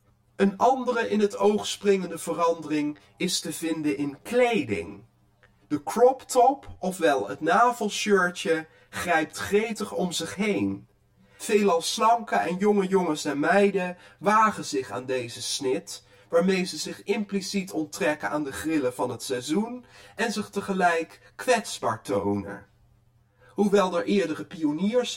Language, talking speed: Dutch, 130 wpm